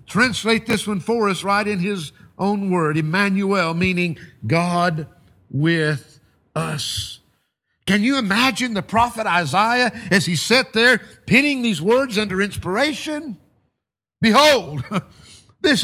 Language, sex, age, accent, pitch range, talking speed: English, male, 50-69, American, 155-250 Hz, 120 wpm